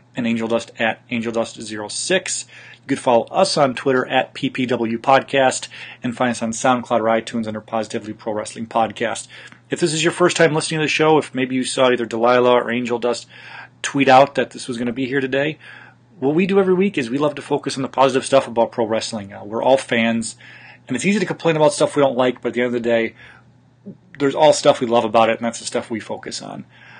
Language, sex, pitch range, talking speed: English, male, 115-135 Hz, 235 wpm